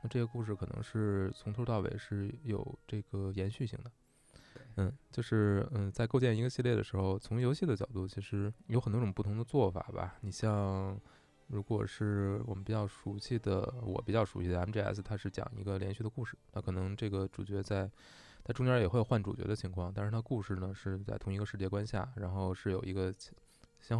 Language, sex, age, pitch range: Chinese, male, 20-39, 95-115 Hz